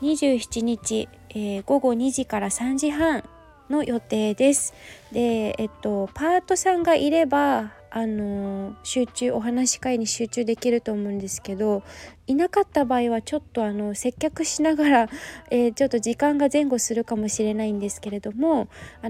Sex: female